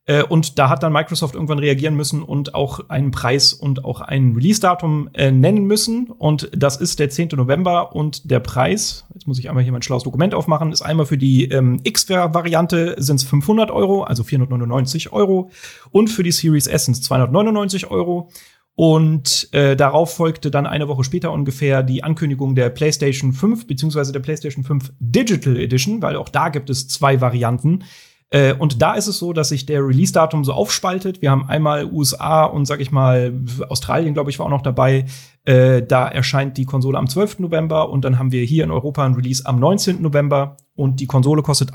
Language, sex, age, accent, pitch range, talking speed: German, male, 40-59, German, 130-160 Hz, 195 wpm